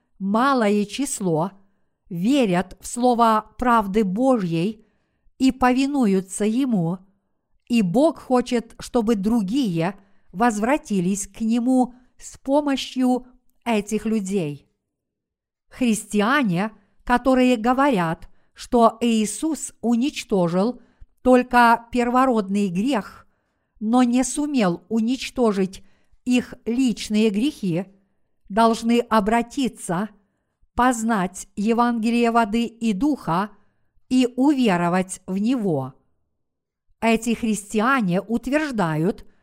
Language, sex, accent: Russian, female, native